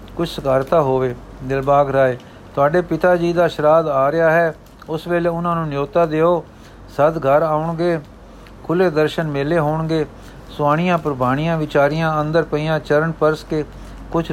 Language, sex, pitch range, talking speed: Punjabi, male, 135-160 Hz, 145 wpm